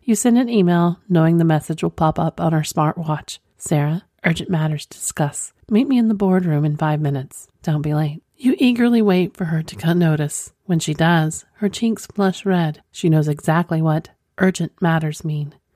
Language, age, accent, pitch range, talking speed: English, 40-59, American, 140-175 Hz, 190 wpm